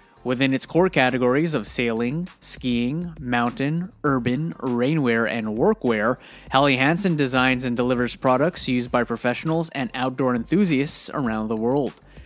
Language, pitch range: English, 125-145 Hz